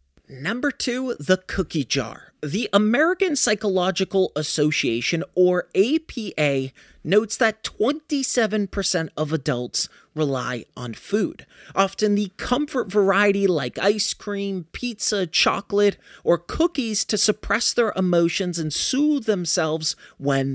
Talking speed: 110 wpm